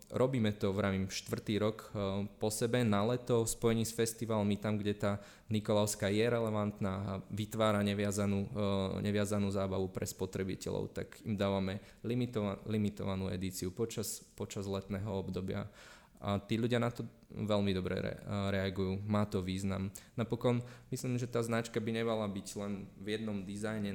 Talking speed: 155 wpm